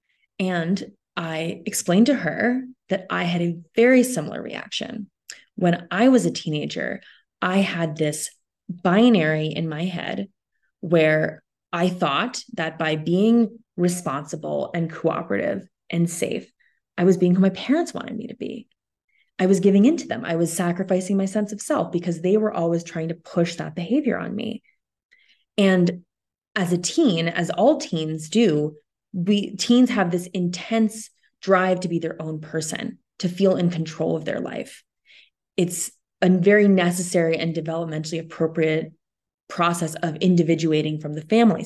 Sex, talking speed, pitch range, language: female, 155 wpm, 165-205 Hz, English